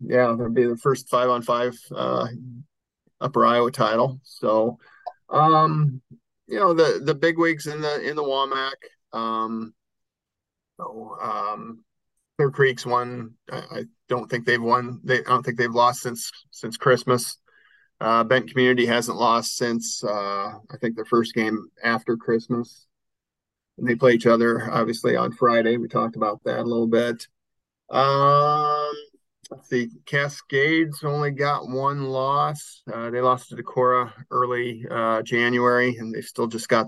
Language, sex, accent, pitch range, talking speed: English, male, American, 115-130 Hz, 155 wpm